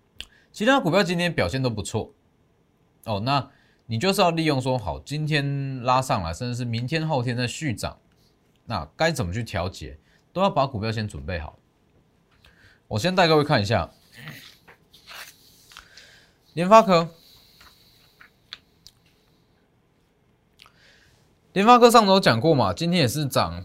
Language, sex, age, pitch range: Chinese, male, 20-39, 100-165 Hz